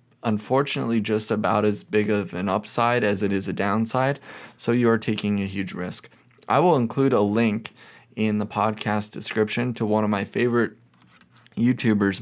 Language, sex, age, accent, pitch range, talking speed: English, male, 20-39, American, 100-120 Hz, 170 wpm